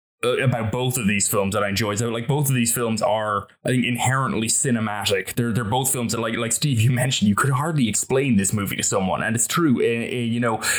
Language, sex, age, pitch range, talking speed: English, male, 20-39, 105-125 Hz, 250 wpm